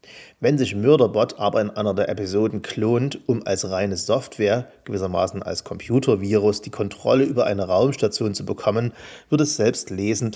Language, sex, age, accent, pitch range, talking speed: German, male, 30-49, German, 100-115 Hz, 155 wpm